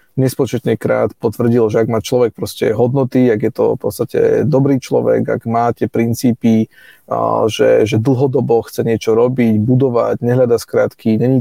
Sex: male